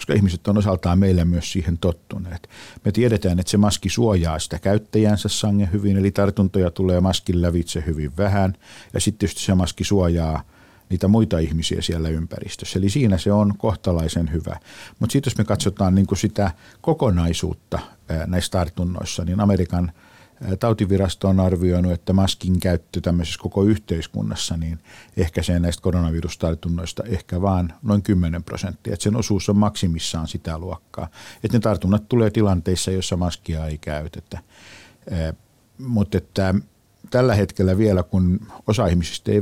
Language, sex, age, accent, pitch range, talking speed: Finnish, male, 50-69, native, 85-105 Hz, 145 wpm